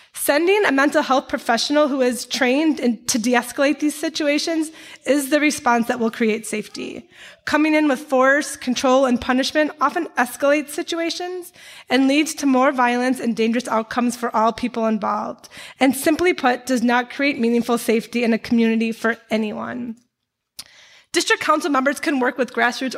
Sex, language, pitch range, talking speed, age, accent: female, English, 240-295 Hz, 160 wpm, 20-39, American